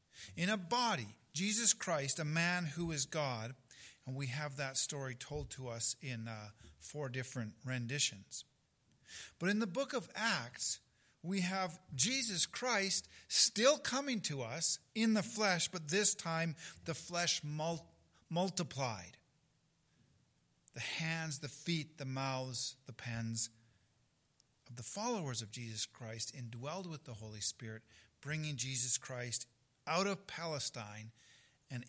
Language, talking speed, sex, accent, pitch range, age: English, 135 wpm, male, American, 120-165 Hz, 50-69